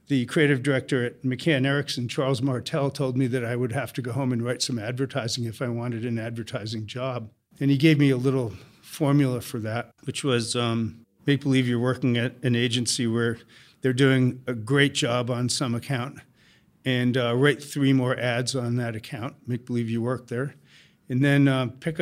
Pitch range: 125-145 Hz